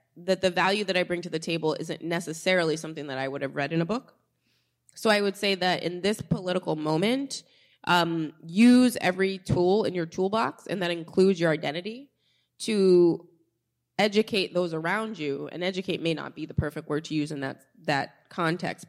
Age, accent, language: 20-39, American, English